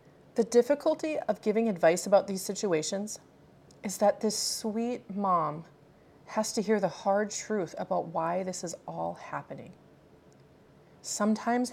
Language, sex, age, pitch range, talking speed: English, female, 30-49, 180-220 Hz, 135 wpm